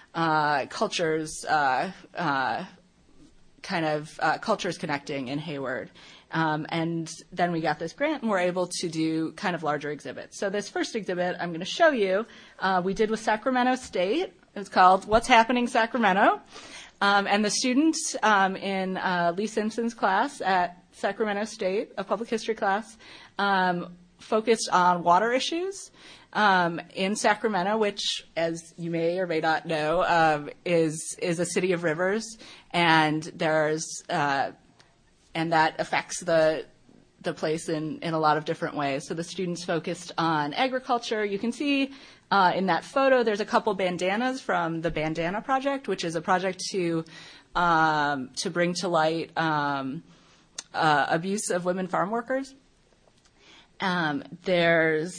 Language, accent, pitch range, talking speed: English, American, 165-215 Hz, 155 wpm